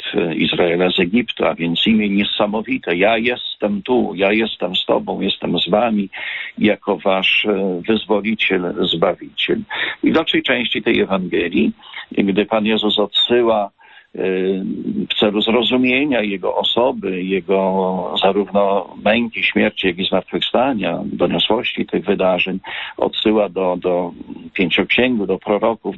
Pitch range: 100-120 Hz